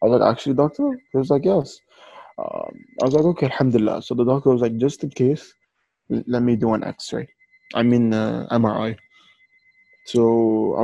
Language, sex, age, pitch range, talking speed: English, male, 20-39, 115-155 Hz, 190 wpm